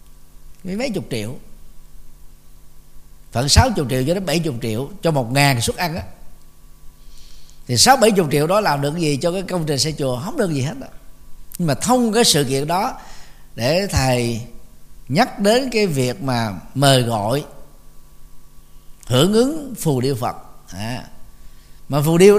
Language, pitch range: Vietnamese, 120-180 Hz